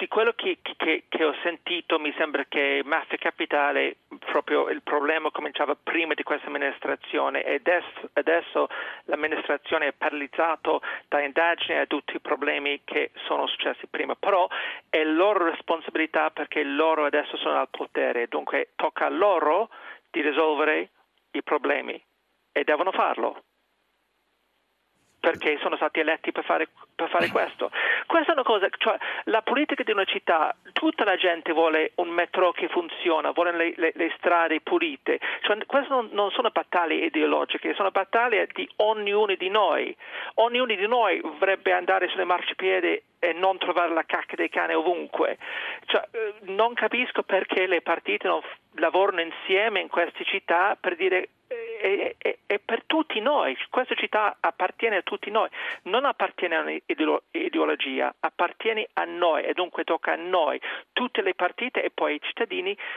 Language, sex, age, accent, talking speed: Italian, male, 40-59, native, 155 wpm